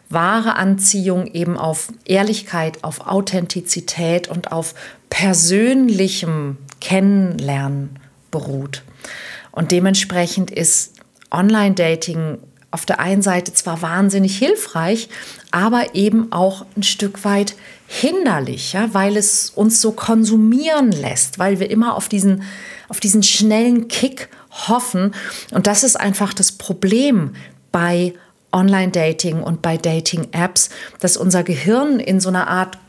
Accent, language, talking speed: German, German, 120 wpm